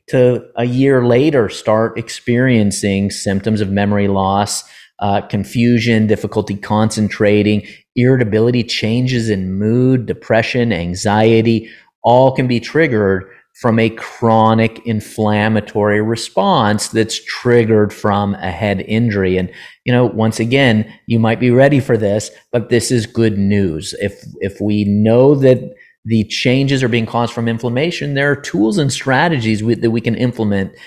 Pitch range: 100-125 Hz